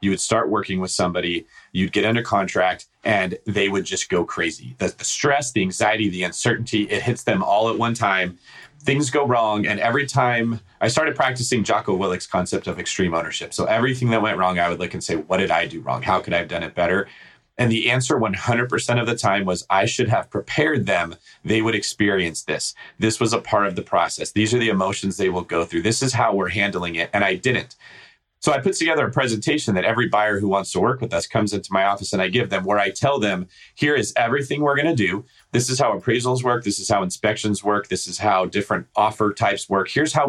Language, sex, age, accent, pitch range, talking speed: English, male, 30-49, American, 100-120 Hz, 240 wpm